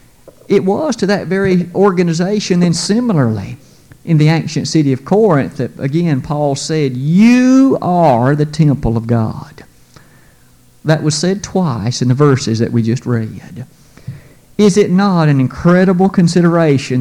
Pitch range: 140-200 Hz